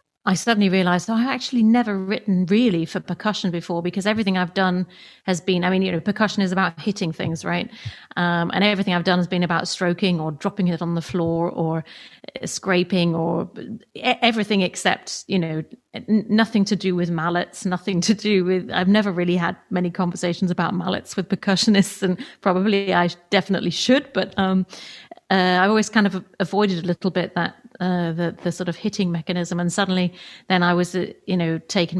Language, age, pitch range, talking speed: English, 30-49, 175-200 Hz, 195 wpm